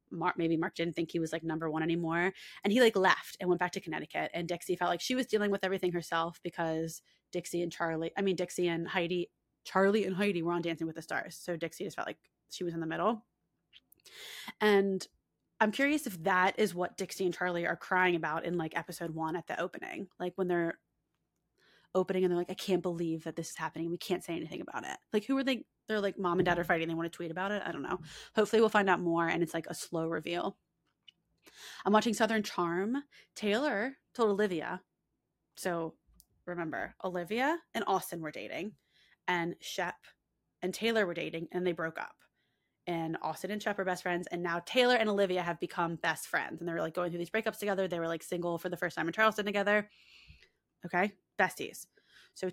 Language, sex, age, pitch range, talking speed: English, female, 20-39, 170-200 Hz, 215 wpm